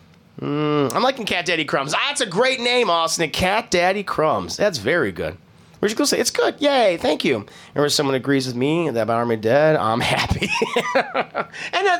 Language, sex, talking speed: English, male, 195 wpm